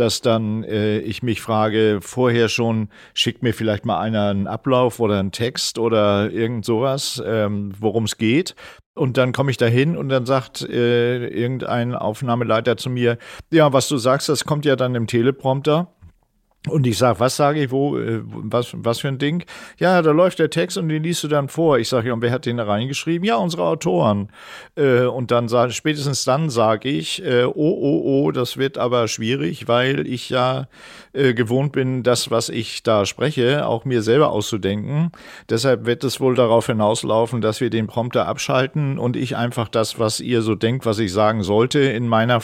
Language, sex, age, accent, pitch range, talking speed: German, male, 50-69, German, 115-135 Hz, 190 wpm